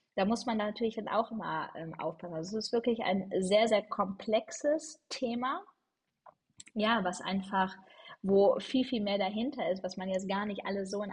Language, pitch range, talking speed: German, 185-230 Hz, 185 wpm